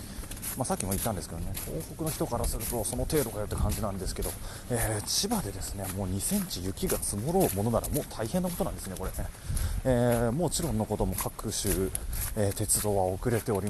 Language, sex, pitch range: Japanese, male, 95-130 Hz